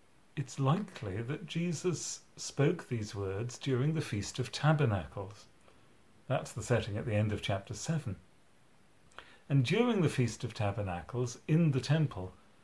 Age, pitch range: 40-59, 110-150 Hz